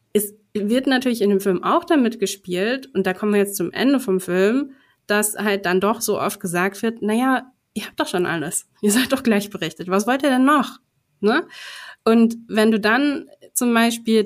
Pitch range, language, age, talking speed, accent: 190-240 Hz, German, 20-39, 205 wpm, German